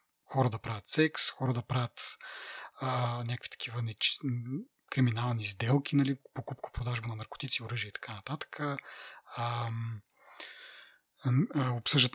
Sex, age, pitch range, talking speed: male, 30-49, 125-155 Hz, 115 wpm